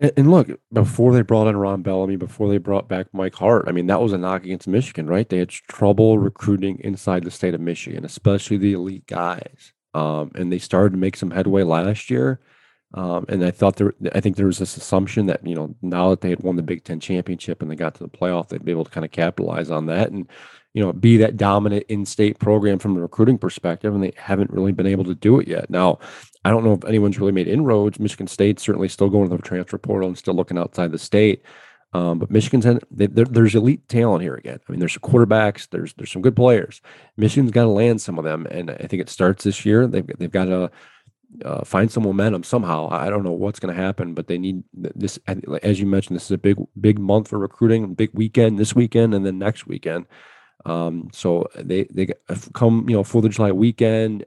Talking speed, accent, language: 235 wpm, American, English